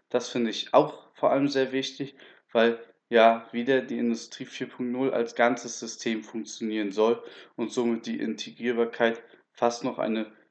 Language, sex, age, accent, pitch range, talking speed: German, male, 10-29, German, 120-145 Hz, 150 wpm